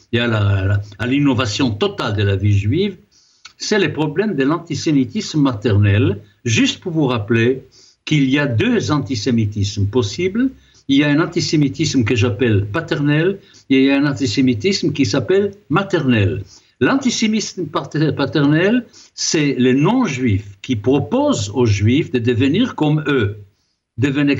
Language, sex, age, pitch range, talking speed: French, male, 60-79, 110-170 Hz, 140 wpm